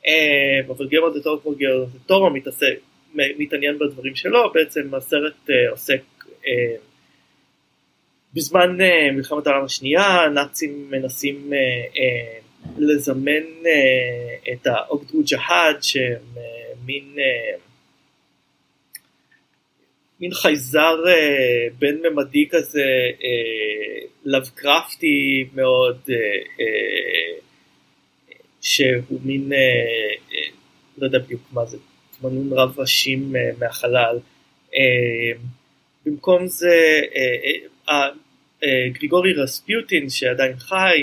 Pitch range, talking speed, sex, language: 130-195 Hz, 80 wpm, male, Hebrew